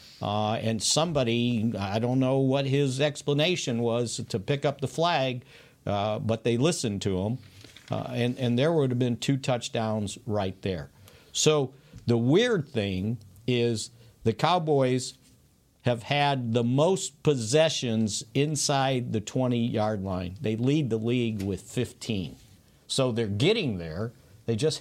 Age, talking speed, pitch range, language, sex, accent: 50-69, 145 wpm, 110-135 Hz, English, male, American